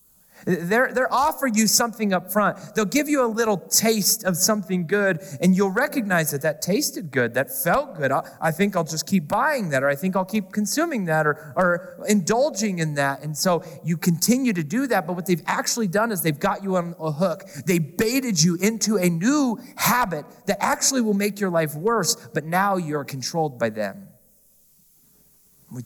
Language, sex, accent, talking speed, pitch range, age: English, male, American, 200 wpm, 160-205 Hz, 30-49